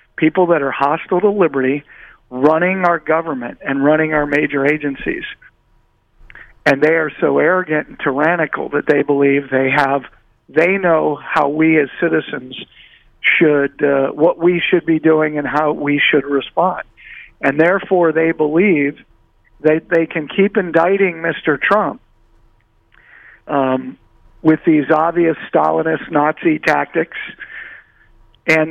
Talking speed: 130 wpm